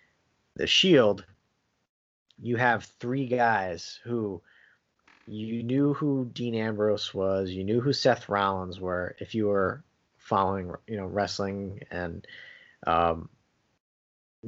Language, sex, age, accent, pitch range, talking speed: English, male, 30-49, American, 95-110 Hz, 115 wpm